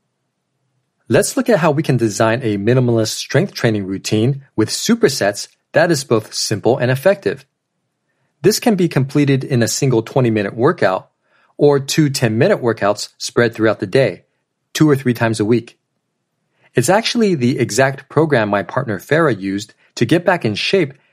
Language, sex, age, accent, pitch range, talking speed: English, male, 40-59, American, 110-145 Hz, 160 wpm